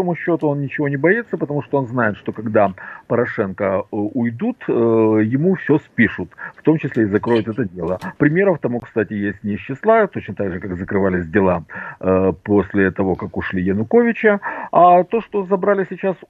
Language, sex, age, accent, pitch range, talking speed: Russian, male, 50-69, native, 100-160 Hz, 170 wpm